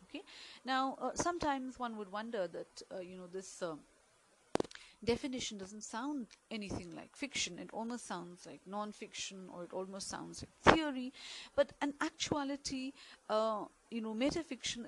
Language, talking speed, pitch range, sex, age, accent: English, 150 wpm, 195-270 Hz, female, 40-59, Indian